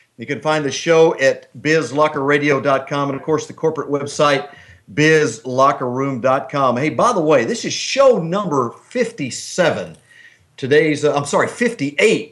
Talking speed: 135 wpm